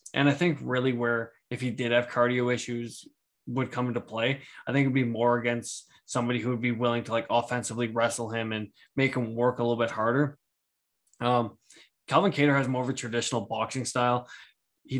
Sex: male